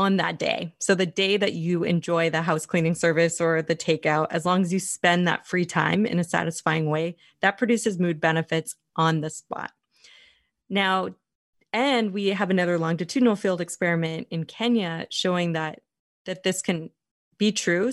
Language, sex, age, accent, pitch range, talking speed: English, female, 20-39, American, 160-195 Hz, 175 wpm